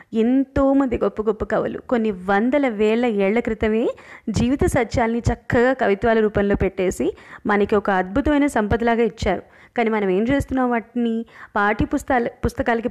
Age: 20-39